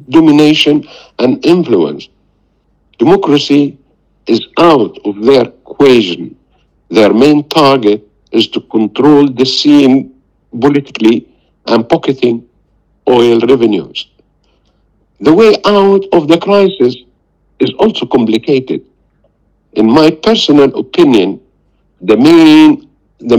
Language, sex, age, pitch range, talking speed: English, male, 60-79, 125-190 Hz, 90 wpm